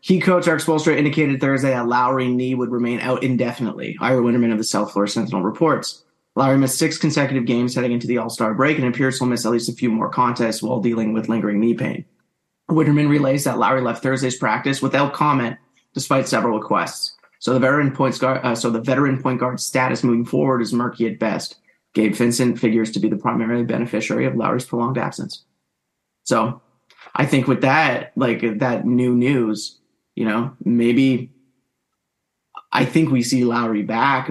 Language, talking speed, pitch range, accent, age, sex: English, 185 wpm, 115-135 Hz, American, 20-39, male